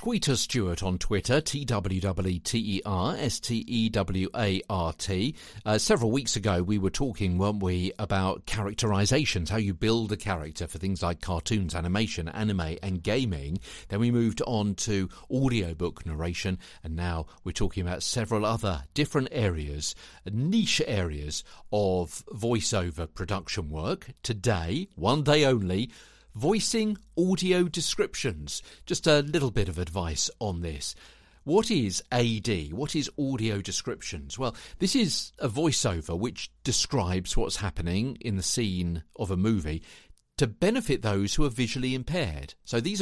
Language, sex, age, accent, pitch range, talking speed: English, male, 50-69, British, 90-125 Hz, 135 wpm